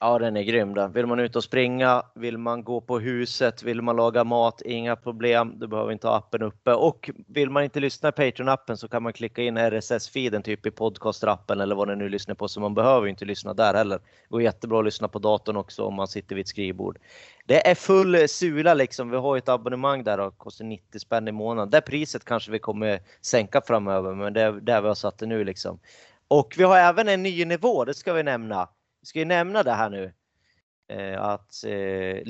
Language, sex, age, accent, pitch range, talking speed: Swedish, male, 30-49, native, 110-150 Hz, 230 wpm